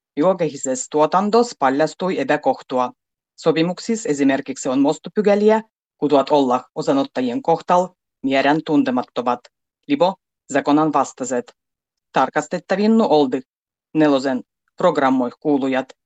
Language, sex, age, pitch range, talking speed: Finnish, female, 30-49, 140-215 Hz, 85 wpm